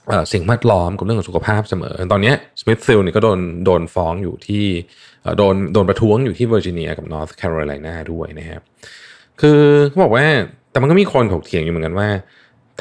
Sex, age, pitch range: male, 20-39, 85-115 Hz